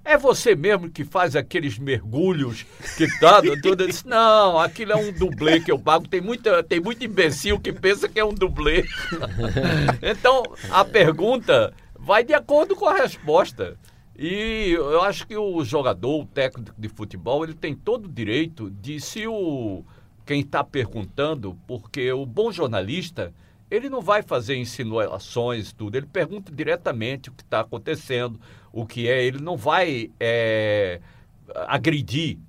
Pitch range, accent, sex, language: 110-175 Hz, Brazilian, male, Portuguese